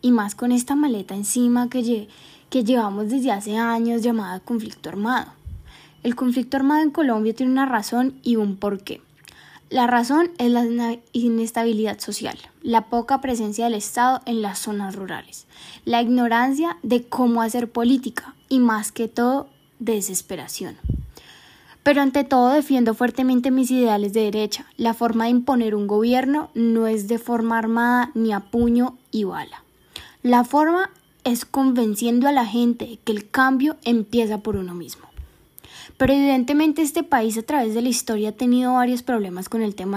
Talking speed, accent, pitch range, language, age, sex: 160 wpm, Colombian, 225-260 Hz, Spanish, 10-29, female